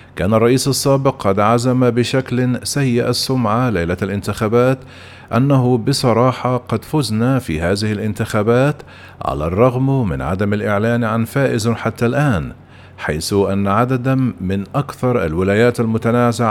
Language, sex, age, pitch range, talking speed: Arabic, male, 50-69, 105-130 Hz, 120 wpm